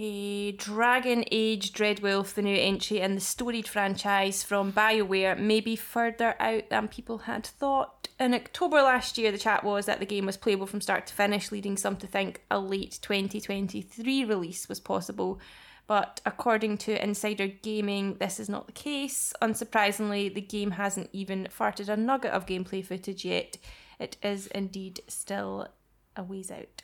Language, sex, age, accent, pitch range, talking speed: English, female, 10-29, British, 195-225 Hz, 170 wpm